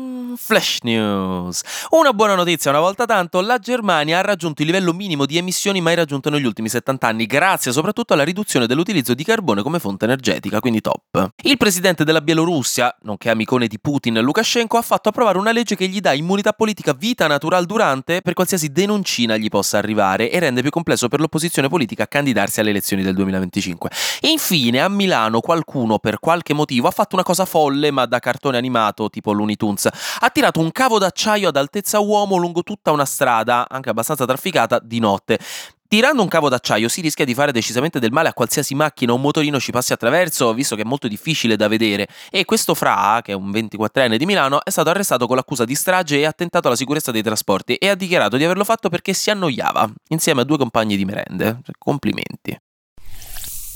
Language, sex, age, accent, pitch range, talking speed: Italian, male, 20-39, native, 115-185 Hz, 195 wpm